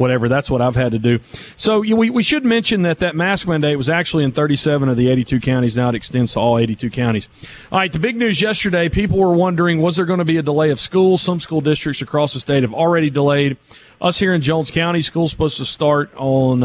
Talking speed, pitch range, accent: 245 wpm, 135-185 Hz, American